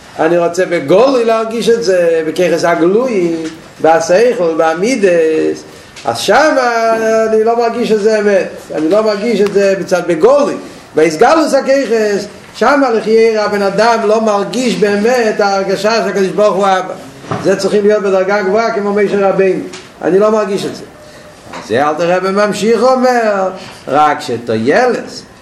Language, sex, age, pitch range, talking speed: Hebrew, male, 50-69, 190-230 Hz, 140 wpm